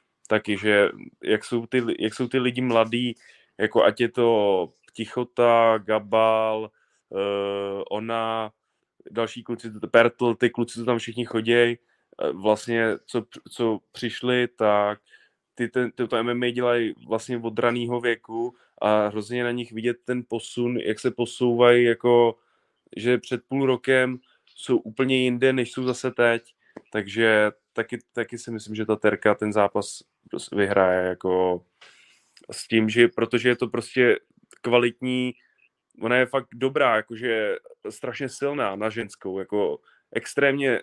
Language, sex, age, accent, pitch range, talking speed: Czech, male, 20-39, native, 110-125 Hz, 140 wpm